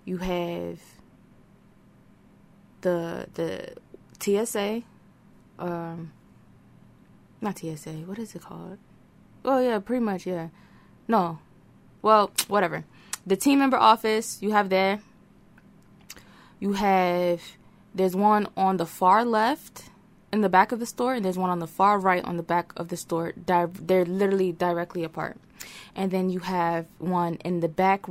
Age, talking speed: 20-39, 145 wpm